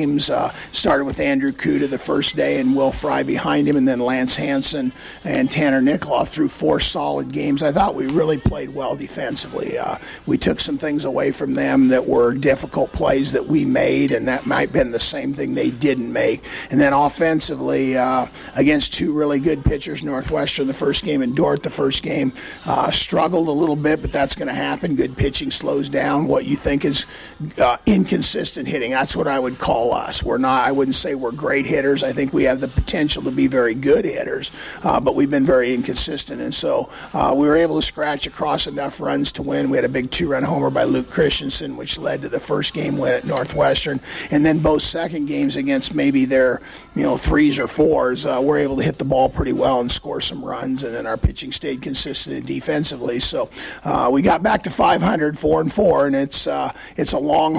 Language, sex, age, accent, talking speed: English, male, 50-69, American, 220 wpm